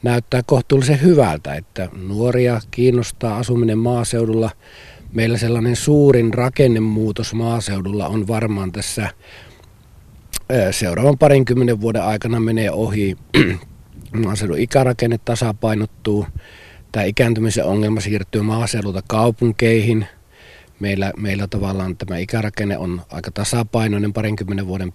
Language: Finnish